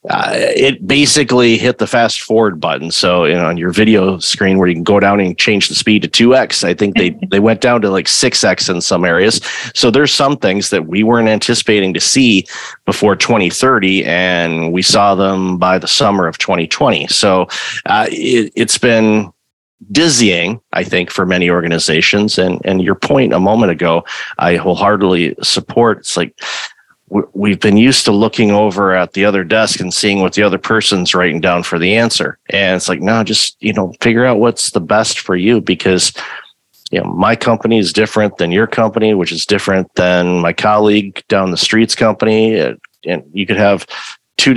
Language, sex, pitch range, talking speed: English, male, 90-110 Hz, 185 wpm